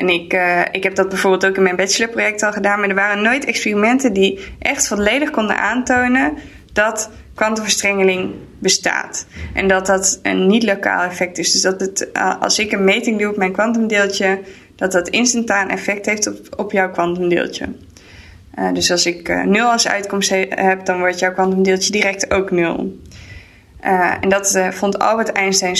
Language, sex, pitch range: Dutch, female, 190-225 Hz